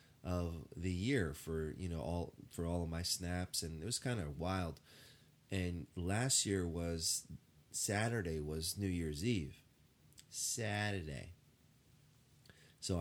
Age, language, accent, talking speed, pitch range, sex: 30-49, English, American, 135 wpm, 85-95 Hz, male